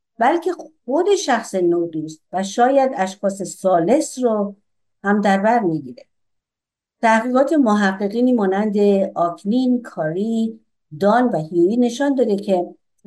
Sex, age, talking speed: female, 50-69, 110 wpm